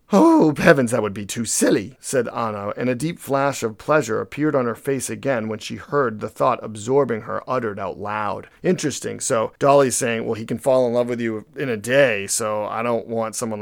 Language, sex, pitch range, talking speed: English, male, 110-130 Hz, 220 wpm